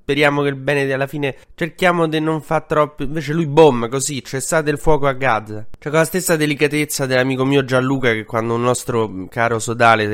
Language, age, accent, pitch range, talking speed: Italian, 20-39, native, 115-145 Hz, 220 wpm